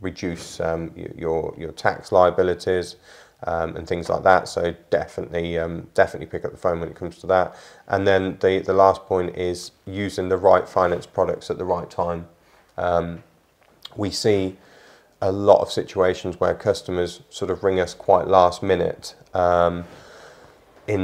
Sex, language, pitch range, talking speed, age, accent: male, English, 85-95 Hz, 165 wpm, 30-49, British